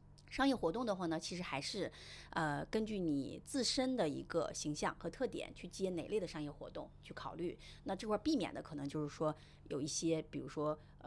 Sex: female